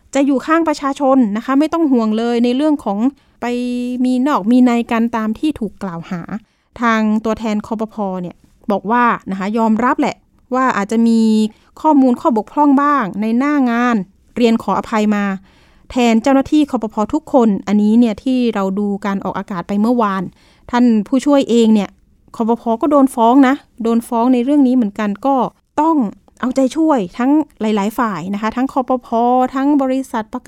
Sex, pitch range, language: female, 215-260 Hz, Thai